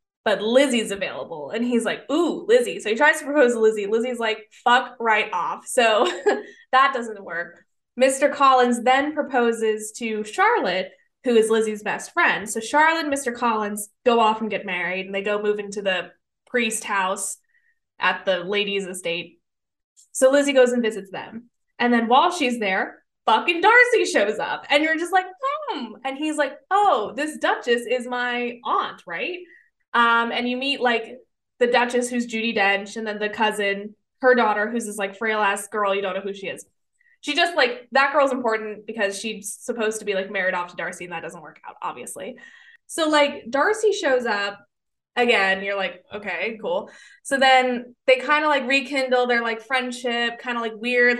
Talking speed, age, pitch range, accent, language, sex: 190 wpm, 10-29, 210-280 Hz, American, English, female